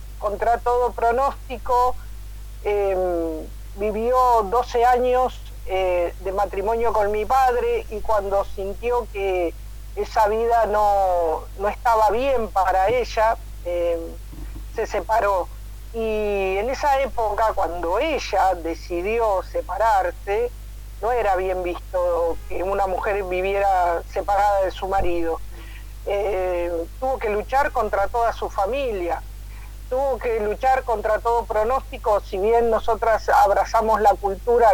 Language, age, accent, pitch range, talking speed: Spanish, 40-59, Argentinian, 190-235 Hz, 115 wpm